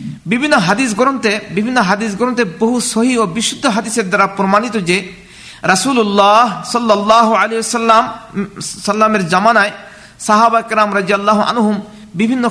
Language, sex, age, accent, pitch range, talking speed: Bengali, male, 50-69, native, 195-230 Hz, 65 wpm